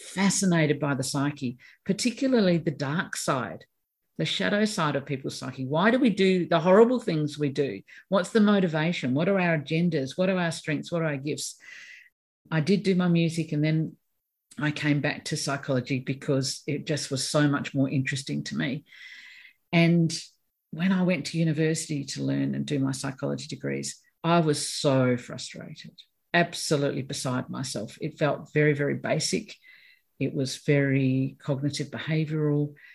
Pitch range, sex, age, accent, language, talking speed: 135-170 Hz, female, 50-69, Australian, English, 165 wpm